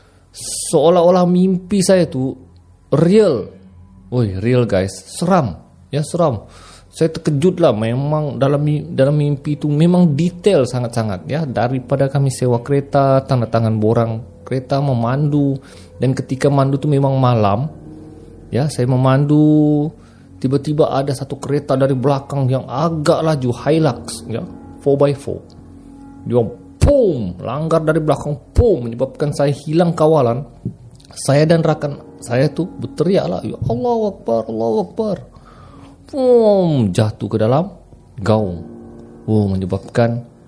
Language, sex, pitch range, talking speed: Malay, male, 115-145 Hz, 125 wpm